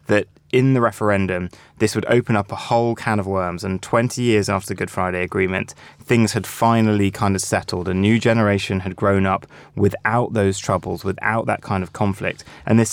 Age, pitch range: 20-39, 100-120 Hz